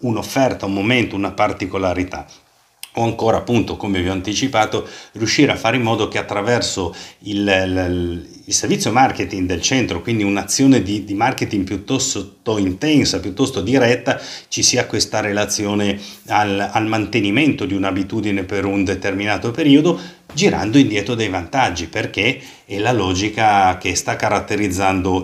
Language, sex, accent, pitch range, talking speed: Italian, male, native, 95-120 Hz, 140 wpm